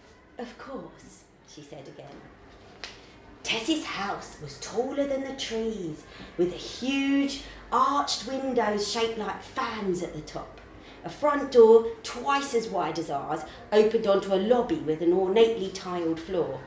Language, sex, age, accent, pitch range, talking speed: English, female, 40-59, British, 165-230 Hz, 145 wpm